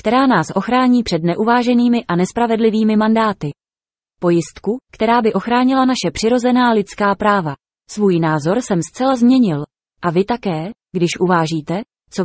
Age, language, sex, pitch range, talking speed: 20-39, Czech, female, 175-245 Hz, 130 wpm